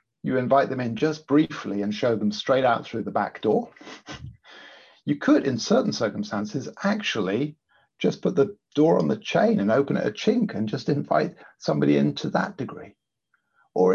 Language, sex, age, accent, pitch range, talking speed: English, male, 50-69, British, 100-130 Hz, 175 wpm